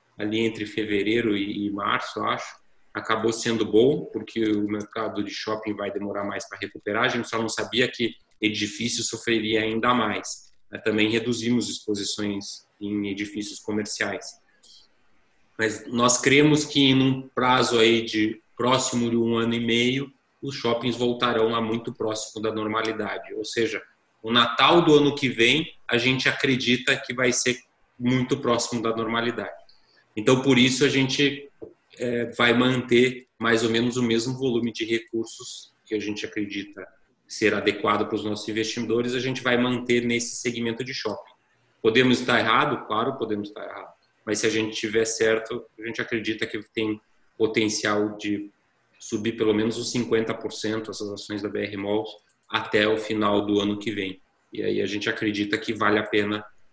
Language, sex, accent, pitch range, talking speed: Portuguese, male, Brazilian, 105-120 Hz, 165 wpm